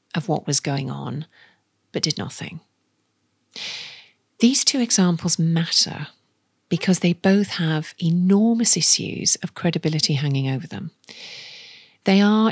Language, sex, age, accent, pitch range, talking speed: English, female, 40-59, British, 155-190 Hz, 120 wpm